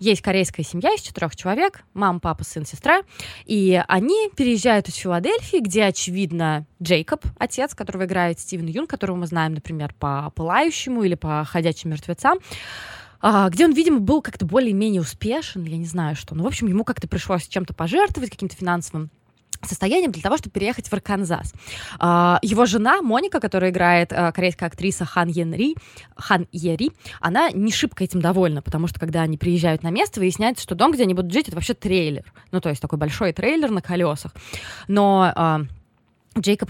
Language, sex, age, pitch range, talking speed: Russian, female, 20-39, 165-220 Hz, 170 wpm